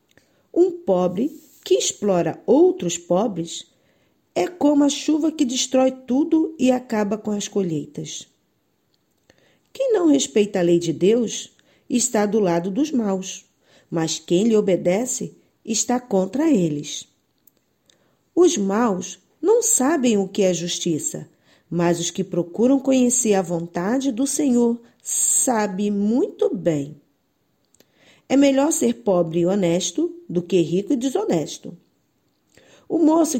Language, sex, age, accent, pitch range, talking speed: Portuguese, female, 40-59, Brazilian, 175-255 Hz, 125 wpm